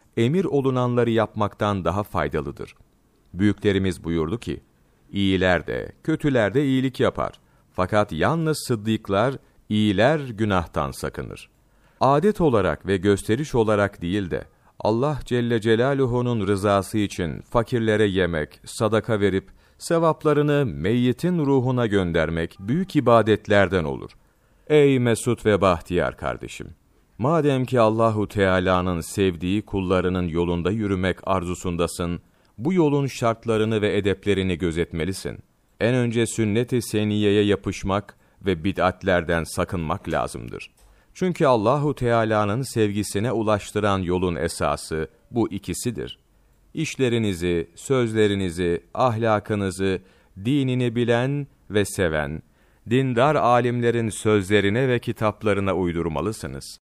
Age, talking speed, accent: 40-59, 95 wpm, native